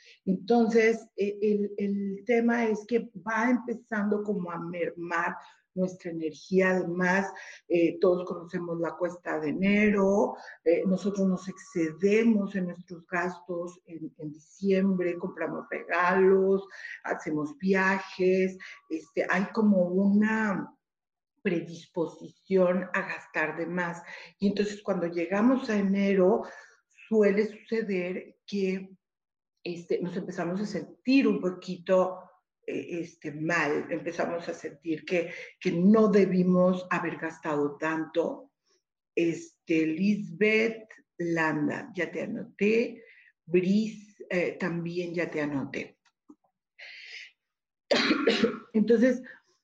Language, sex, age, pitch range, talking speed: Spanish, female, 50-69, 170-210 Hz, 100 wpm